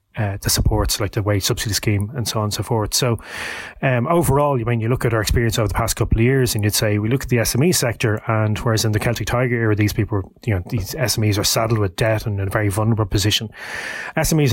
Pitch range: 105-120 Hz